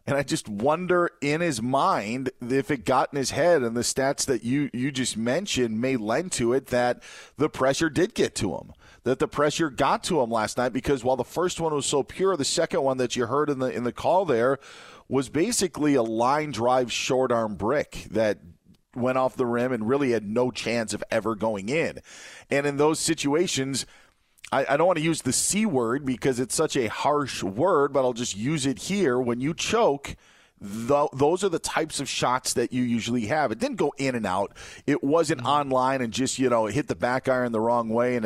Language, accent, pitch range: English, American, 120-145 Hz